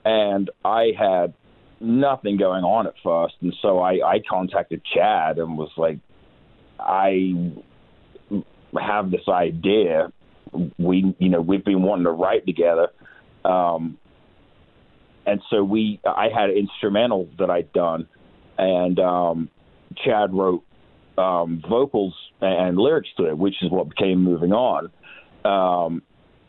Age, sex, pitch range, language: 40-59, male, 85-100 Hz, English